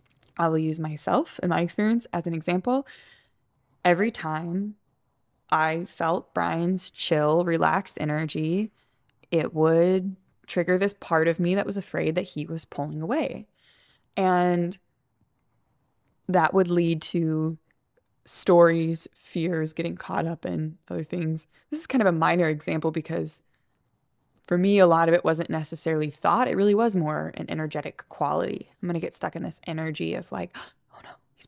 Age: 20-39